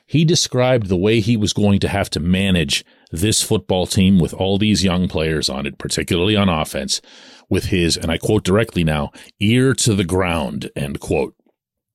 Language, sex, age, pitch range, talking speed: English, male, 40-59, 95-135 Hz, 185 wpm